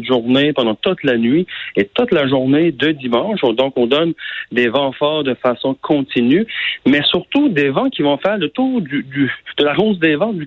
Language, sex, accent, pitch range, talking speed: French, male, French, 115-150 Hz, 210 wpm